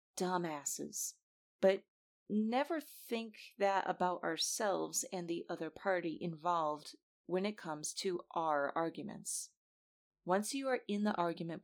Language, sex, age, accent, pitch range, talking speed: English, female, 30-49, American, 160-205 Hz, 125 wpm